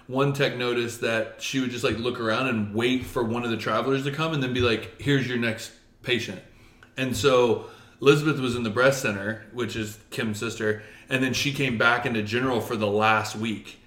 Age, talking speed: 30-49, 215 wpm